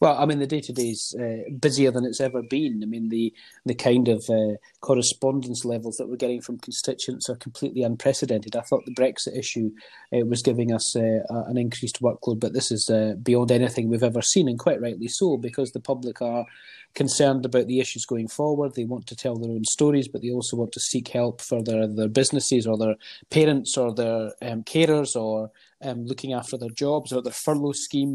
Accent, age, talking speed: British, 30-49, 215 wpm